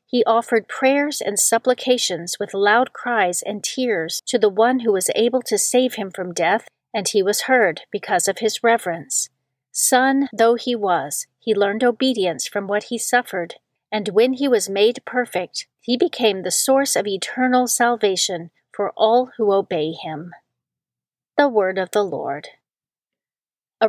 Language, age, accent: English, 40-59, American